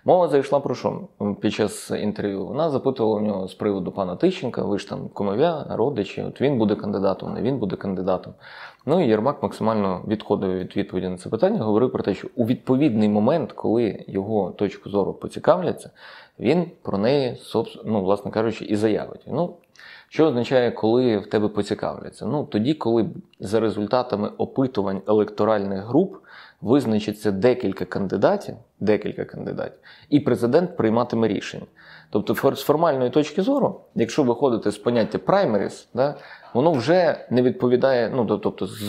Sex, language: male, Ukrainian